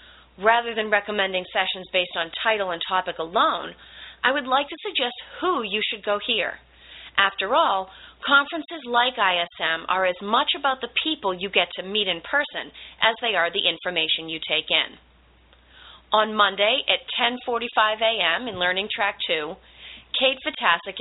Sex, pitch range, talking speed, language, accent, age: female, 170-230 Hz, 160 wpm, English, American, 30-49